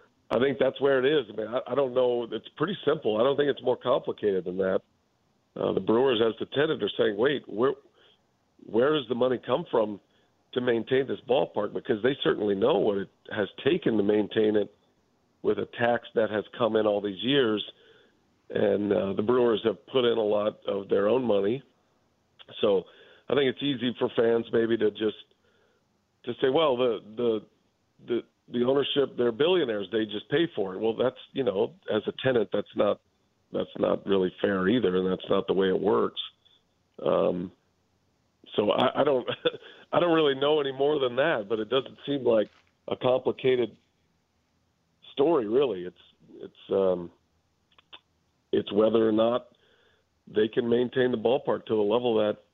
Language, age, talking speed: English, 50-69, 180 wpm